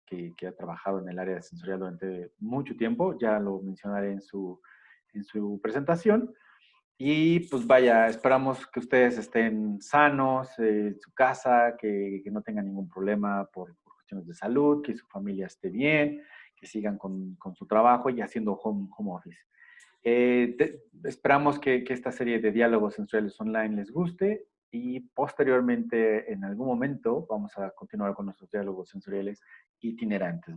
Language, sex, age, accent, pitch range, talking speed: Spanish, male, 40-59, Mexican, 100-135 Hz, 165 wpm